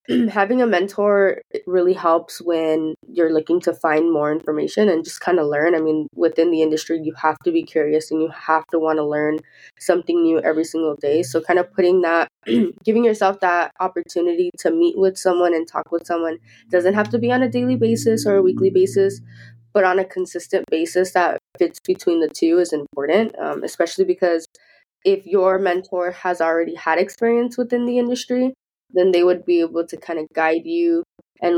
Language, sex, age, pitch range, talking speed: English, female, 20-39, 160-195 Hz, 200 wpm